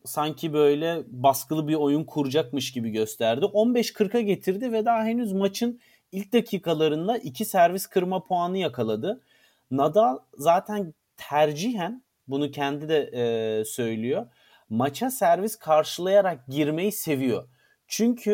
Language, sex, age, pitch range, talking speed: Turkish, male, 40-59, 140-195 Hz, 115 wpm